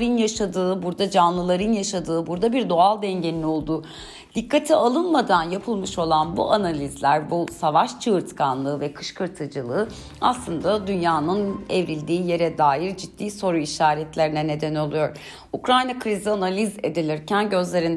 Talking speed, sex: 115 wpm, female